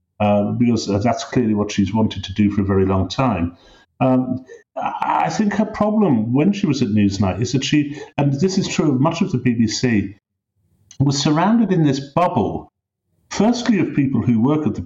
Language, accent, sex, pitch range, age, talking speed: English, British, male, 110-165 Hz, 50-69, 195 wpm